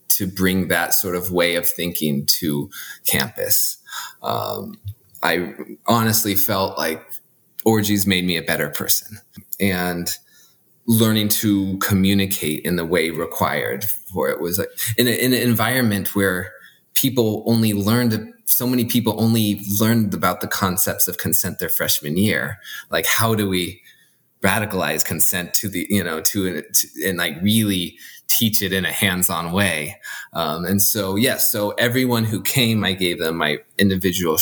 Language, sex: English, male